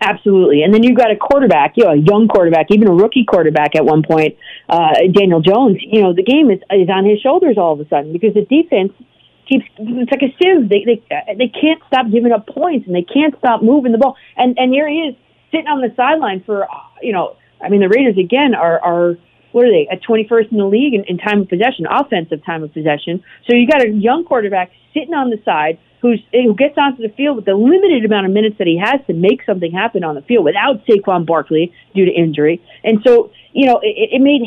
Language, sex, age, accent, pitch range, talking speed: English, female, 40-59, American, 180-255 Hz, 245 wpm